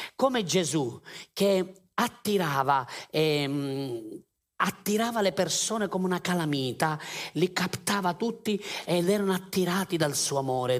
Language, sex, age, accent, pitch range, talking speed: Italian, male, 40-59, native, 140-185 Hz, 105 wpm